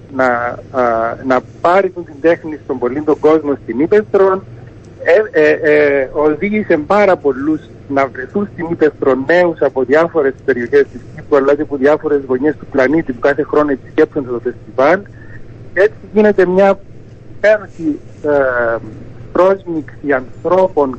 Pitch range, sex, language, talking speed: 125-170 Hz, male, Greek, 120 wpm